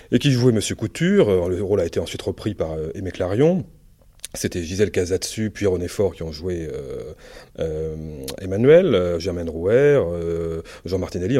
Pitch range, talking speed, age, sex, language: 85-110 Hz, 170 wpm, 30-49, male, French